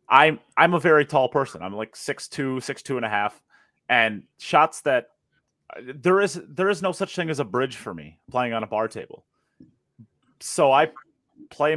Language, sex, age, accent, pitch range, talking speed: English, male, 30-49, American, 110-135 Hz, 195 wpm